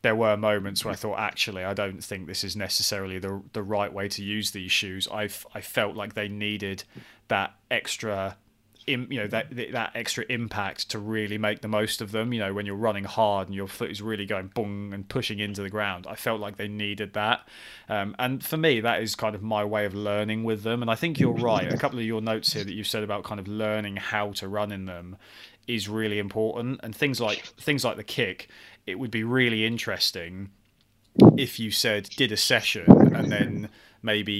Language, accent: English, British